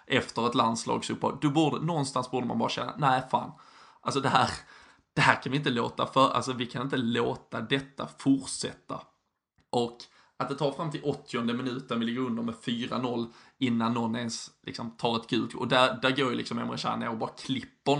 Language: Swedish